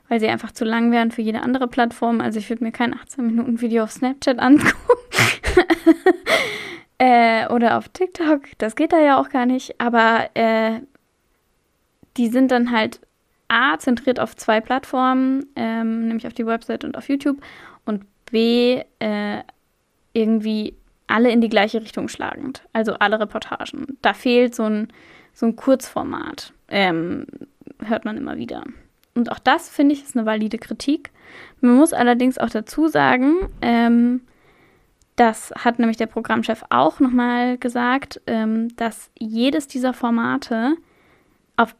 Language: German